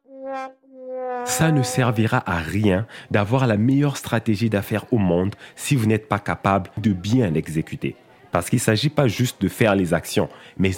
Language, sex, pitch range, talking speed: English, male, 100-135 Hz, 175 wpm